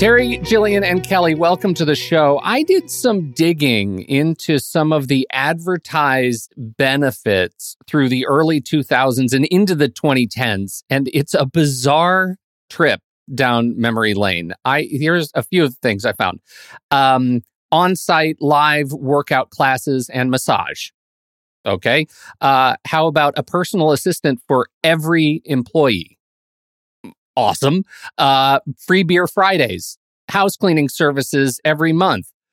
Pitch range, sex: 130-175 Hz, male